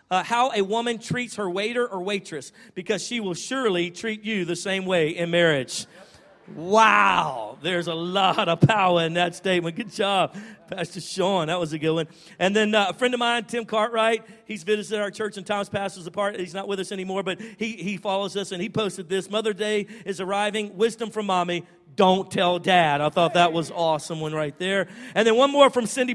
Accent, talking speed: American, 215 wpm